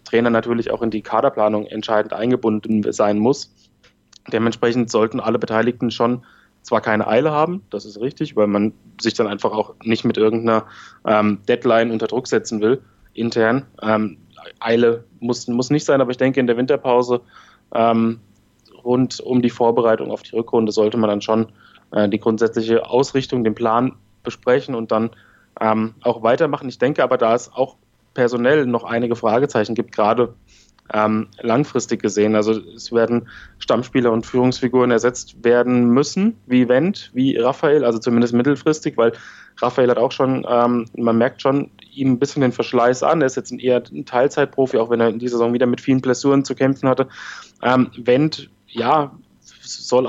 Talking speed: 170 wpm